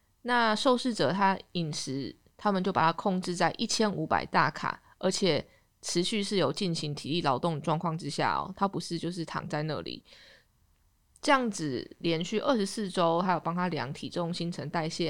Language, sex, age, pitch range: Chinese, female, 20-39, 160-210 Hz